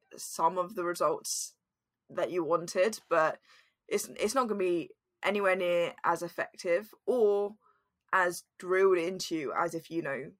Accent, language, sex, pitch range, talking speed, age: British, English, female, 170-205 Hz, 150 wpm, 10-29